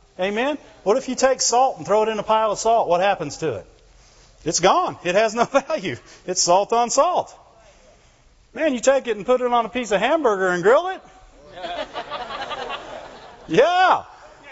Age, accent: 40-59, American